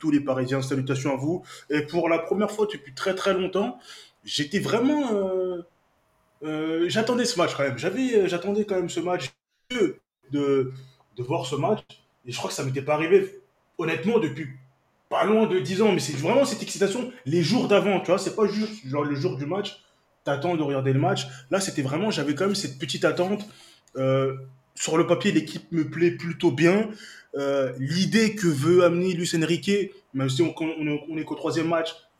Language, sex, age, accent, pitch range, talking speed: French, male, 20-39, French, 140-185 Hz, 195 wpm